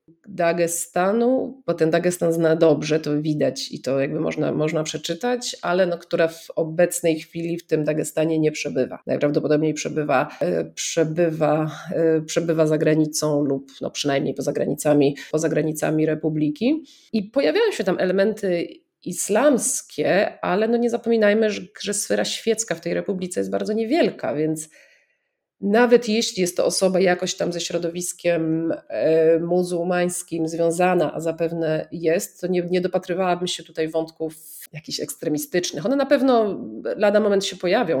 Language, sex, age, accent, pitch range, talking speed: Polish, female, 30-49, native, 155-190 Hz, 135 wpm